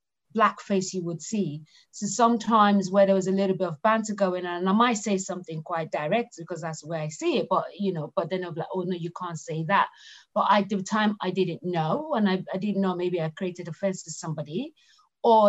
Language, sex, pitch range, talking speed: English, female, 180-210 Hz, 245 wpm